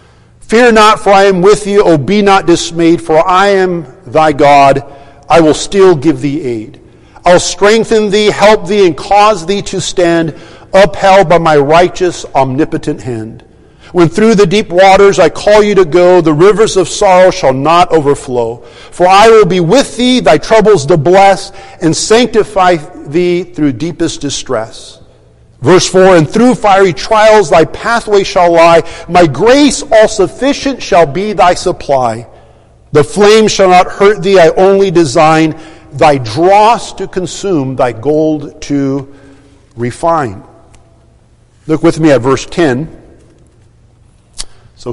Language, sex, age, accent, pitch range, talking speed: English, male, 50-69, American, 150-200 Hz, 150 wpm